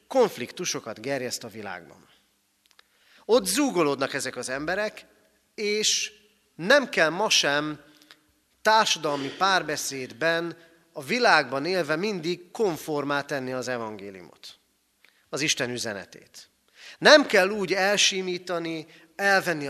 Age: 40-59